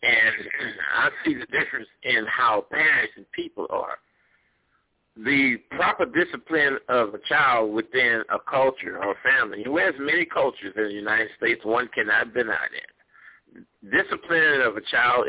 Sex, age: male, 60-79